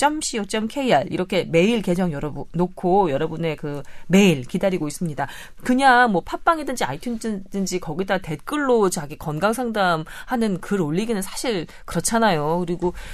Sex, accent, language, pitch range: female, native, Korean, 155-225 Hz